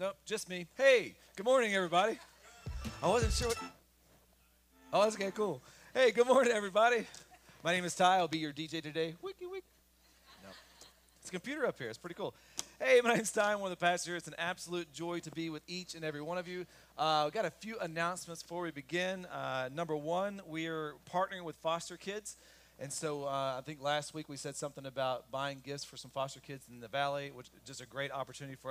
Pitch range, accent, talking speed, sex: 150-185 Hz, American, 215 wpm, male